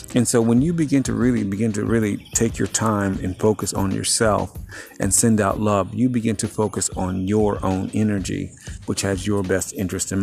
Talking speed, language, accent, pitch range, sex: 205 wpm, English, American, 95-115 Hz, male